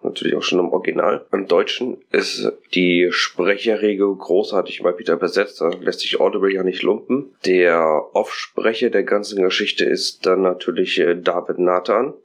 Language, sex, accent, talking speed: German, male, German, 150 wpm